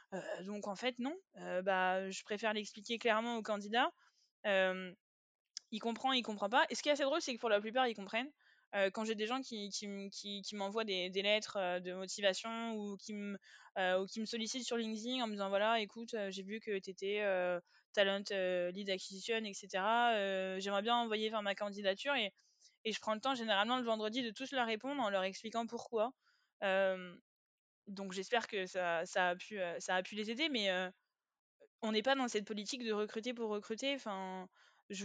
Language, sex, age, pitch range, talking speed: French, female, 20-39, 195-235 Hz, 205 wpm